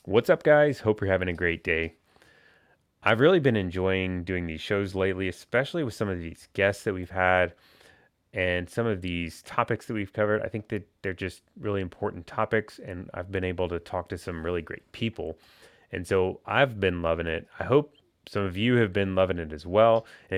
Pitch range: 90-105 Hz